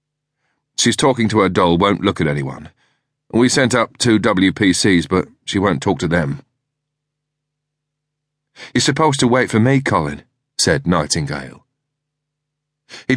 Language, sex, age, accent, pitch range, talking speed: English, male, 40-59, British, 105-150 Hz, 135 wpm